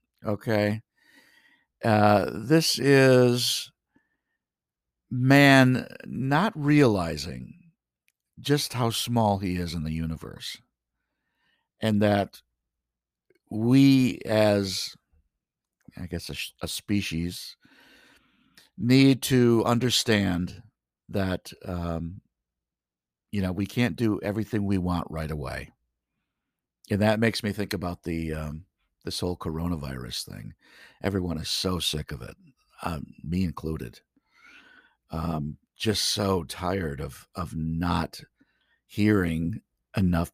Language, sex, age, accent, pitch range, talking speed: English, male, 50-69, American, 85-125 Hz, 105 wpm